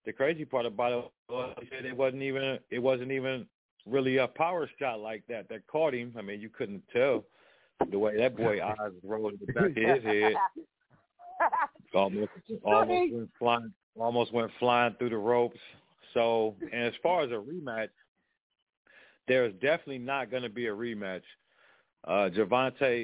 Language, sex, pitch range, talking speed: English, male, 105-130 Hz, 175 wpm